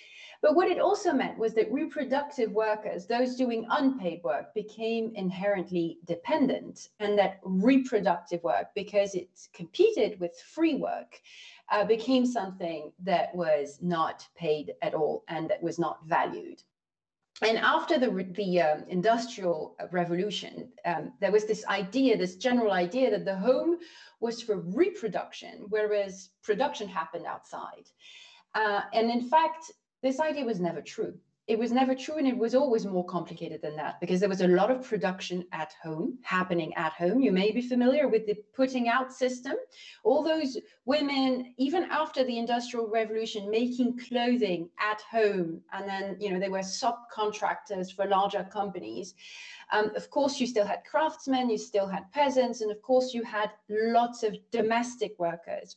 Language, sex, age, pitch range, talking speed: English, female, 40-59, 190-255 Hz, 160 wpm